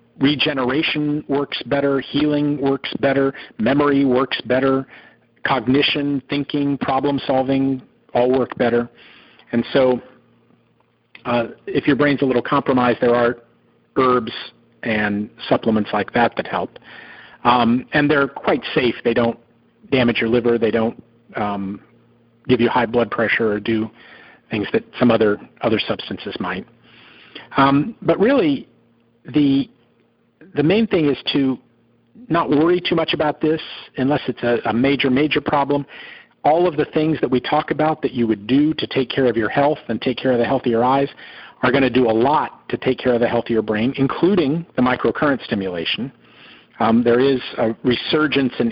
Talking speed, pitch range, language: 160 wpm, 120-140 Hz, English